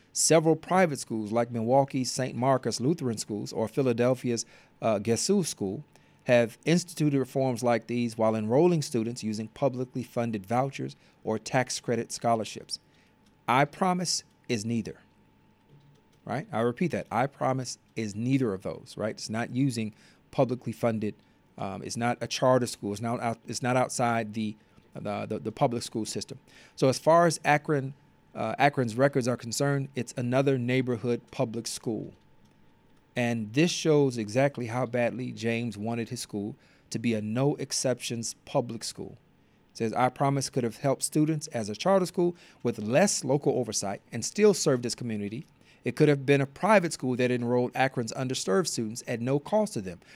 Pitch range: 115-140 Hz